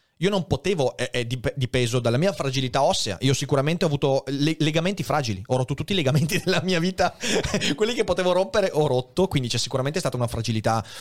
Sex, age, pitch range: male, 30-49, 115-155 Hz